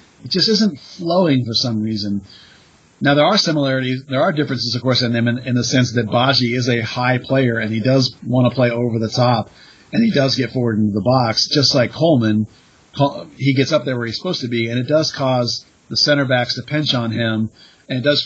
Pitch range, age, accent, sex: 120-145 Hz, 40-59, American, male